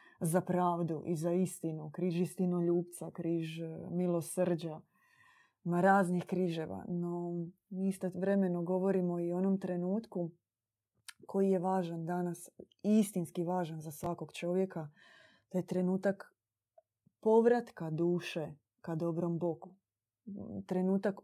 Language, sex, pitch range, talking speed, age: Croatian, female, 170-195 Hz, 105 wpm, 20-39